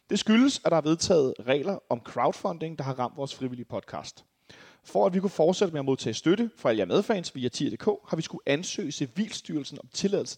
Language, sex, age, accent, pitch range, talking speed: Danish, male, 30-49, native, 130-200 Hz, 215 wpm